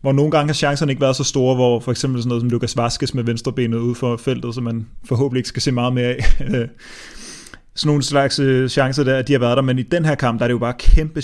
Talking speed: 285 wpm